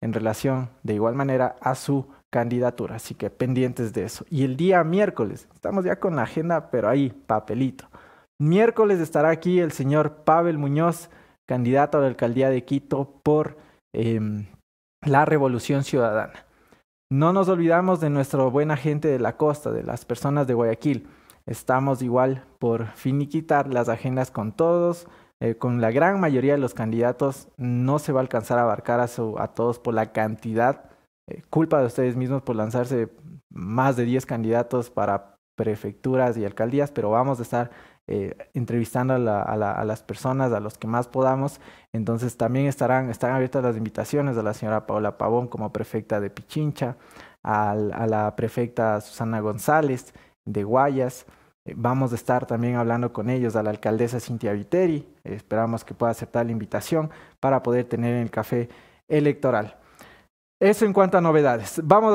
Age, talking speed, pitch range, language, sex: 20-39, 165 wpm, 115-150 Hz, English, male